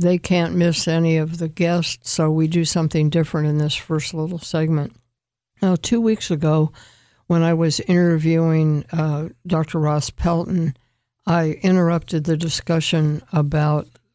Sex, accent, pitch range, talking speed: female, American, 155-170 Hz, 145 wpm